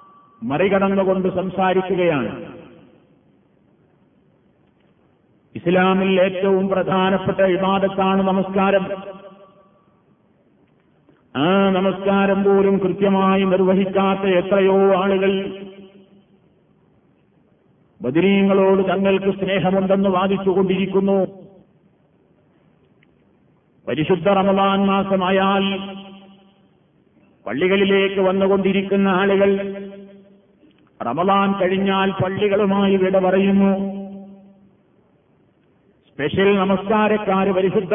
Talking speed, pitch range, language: 50 wpm, 190-200 Hz, Malayalam